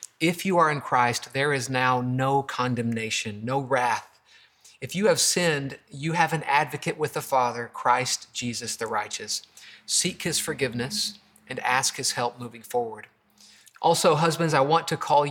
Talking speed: 165 wpm